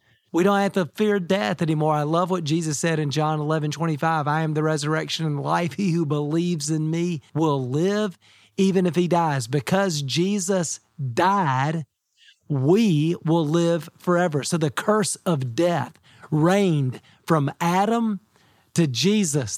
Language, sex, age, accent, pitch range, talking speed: English, male, 40-59, American, 150-190 Hz, 160 wpm